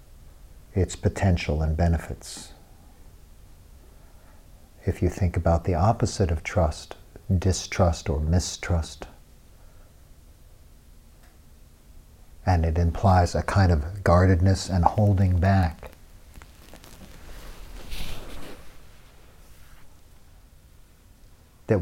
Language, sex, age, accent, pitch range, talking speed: English, male, 50-69, American, 80-100 Hz, 70 wpm